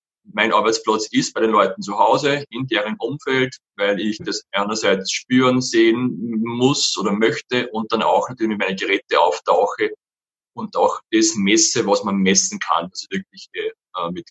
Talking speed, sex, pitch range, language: 160 wpm, male, 105-155 Hz, German